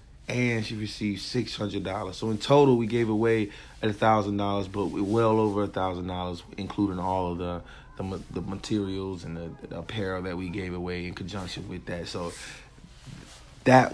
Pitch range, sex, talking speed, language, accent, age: 95-105 Hz, male, 155 wpm, English, American, 30-49